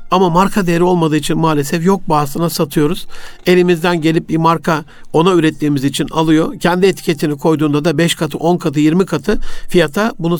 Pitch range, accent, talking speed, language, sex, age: 160-195 Hz, native, 165 wpm, Turkish, male, 60-79